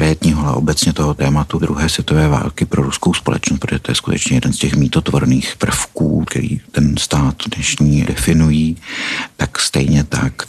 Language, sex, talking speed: Czech, male, 155 wpm